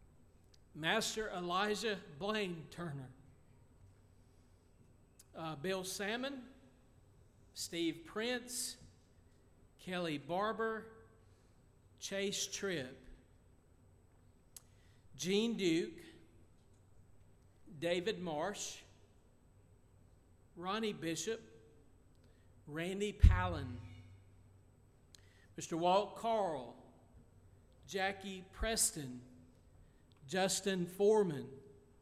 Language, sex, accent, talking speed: English, male, American, 50 wpm